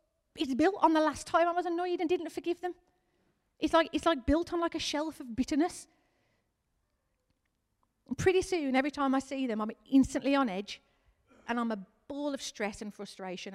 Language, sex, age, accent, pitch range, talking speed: English, female, 40-59, British, 220-320 Hz, 195 wpm